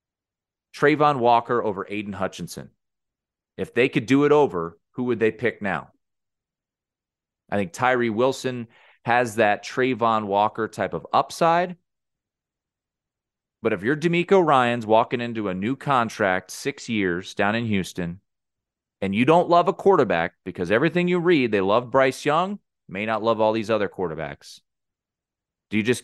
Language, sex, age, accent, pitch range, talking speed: English, male, 30-49, American, 105-165 Hz, 150 wpm